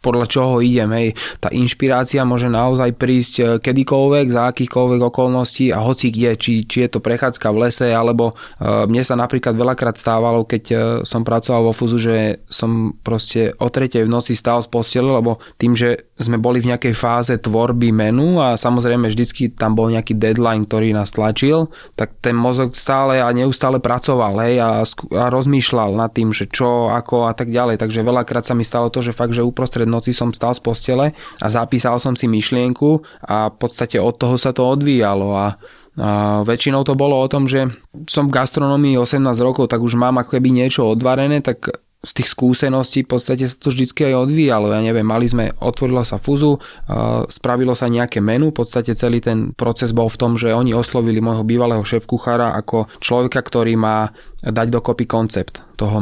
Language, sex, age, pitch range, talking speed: Slovak, male, 20-39, 115-130 Hz, 185 wpm